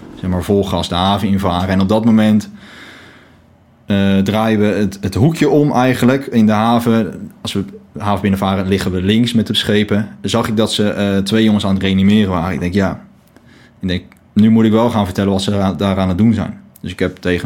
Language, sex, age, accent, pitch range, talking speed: Dutch, male, 20-39, Dutch, 95-105 Hz, 225 wpm